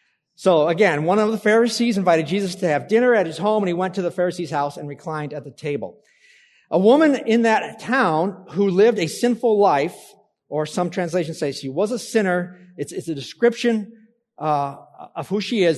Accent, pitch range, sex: American, 145-210 Hz, male